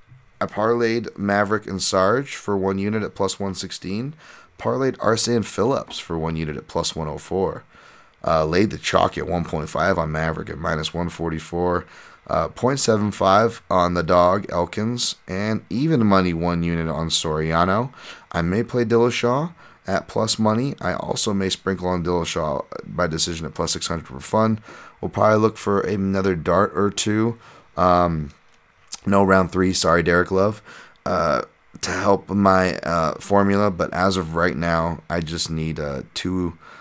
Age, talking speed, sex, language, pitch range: 30-49, 155 wpm, male, English, 80-100 Hz